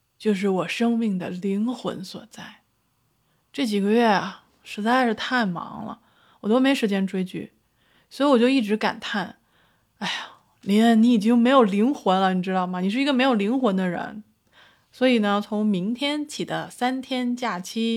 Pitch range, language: 185-235 Hz, Chinese